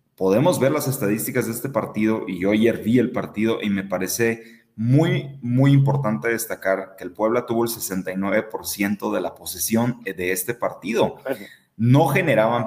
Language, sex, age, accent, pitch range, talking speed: Spanish, male, 30-49, Mexican, 105-135 Hz, 160 wpm